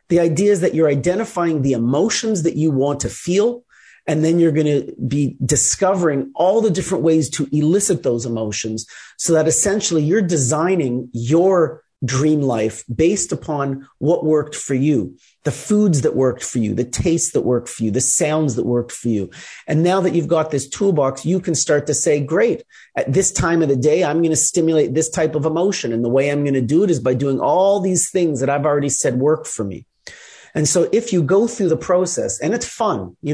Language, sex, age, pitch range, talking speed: English, male, 40-59, 135-175 Hz, 215 wpm